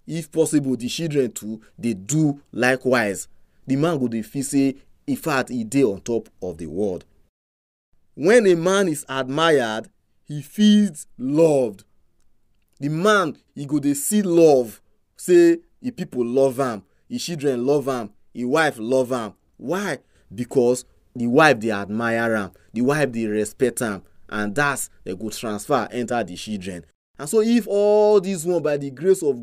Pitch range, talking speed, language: 100-155 Hz, 160 wpm, English